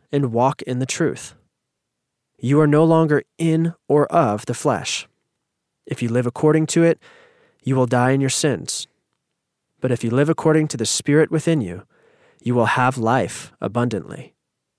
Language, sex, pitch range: English, male, 115-150 Hz